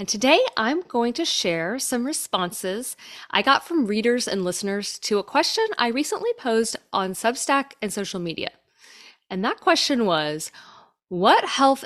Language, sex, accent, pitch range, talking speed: English, female, American, 175-275 Hz, 155 wpm